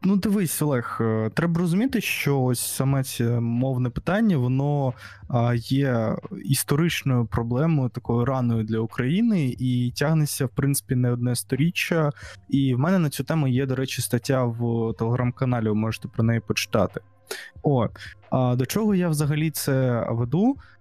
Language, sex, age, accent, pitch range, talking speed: Ukrainian, male, 20-39, native, 125-155 Hz, 145 wpm